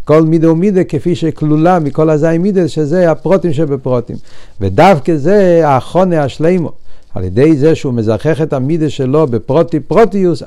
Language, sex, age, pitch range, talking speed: Hebrew, male, 60-79, 135-165 Hz, 145 wpm